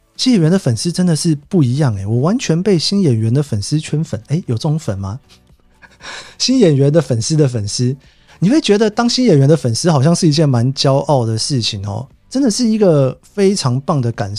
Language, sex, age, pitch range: Chinese, male, 30-49, 120-170 Hz